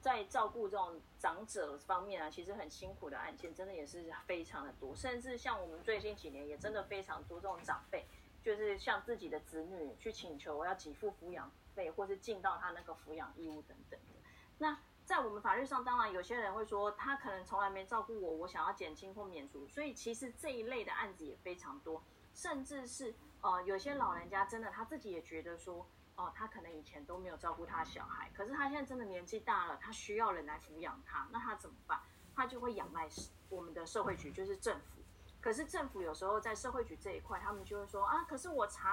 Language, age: Chinese, 30-49